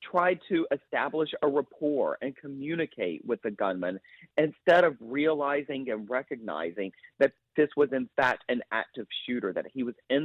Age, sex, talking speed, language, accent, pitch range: 40-59, male, 160 wpm, English, American, 125-165 Hz